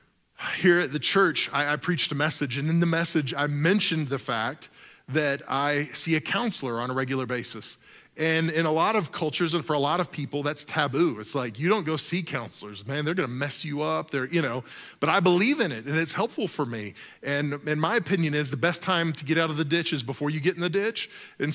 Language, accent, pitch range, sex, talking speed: English, American, 135-175 Hz, male, 245 wpm